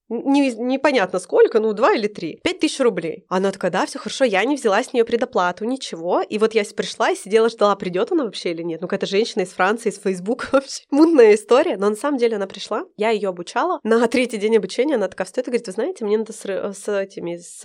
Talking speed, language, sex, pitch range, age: 240 wpm, Russian, female, 200-250 Hz, 20-39